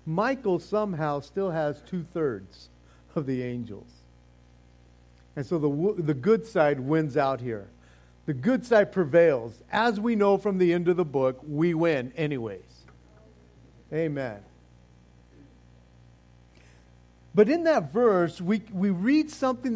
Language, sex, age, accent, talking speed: English, male, 50-69, American, 130 wpm